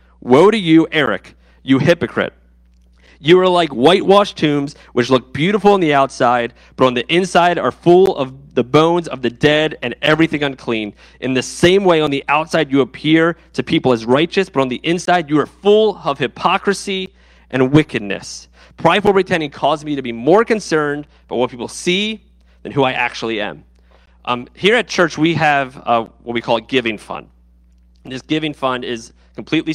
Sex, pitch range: male, 110-160 Hz